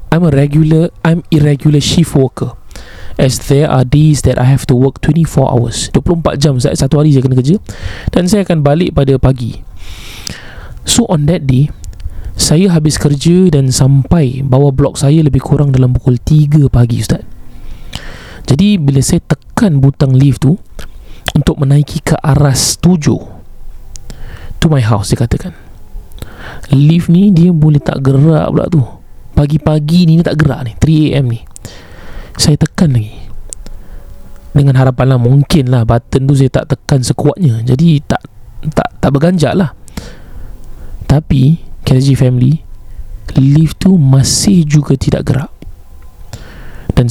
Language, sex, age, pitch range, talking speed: Malay, male, 20-39, 120-150 Hz, 140 wpm